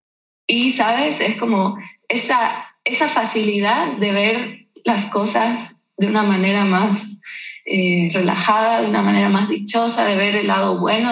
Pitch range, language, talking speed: 190-220 Hz, Spanish, 145 wpm